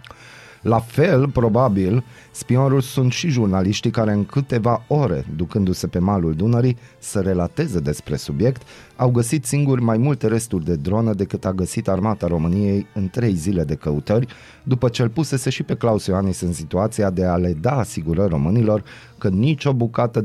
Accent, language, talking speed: native, Romanian, 165 wpm